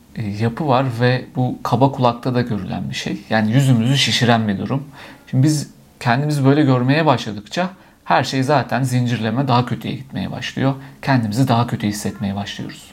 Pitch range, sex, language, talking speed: 115-145 Hz, male, Turkish, 160 wpm